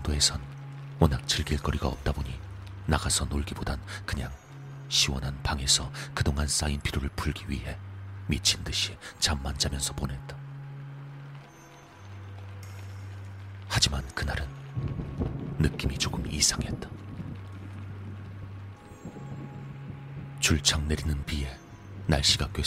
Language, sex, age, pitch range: Korean, male, 40-59, 75-105 Hz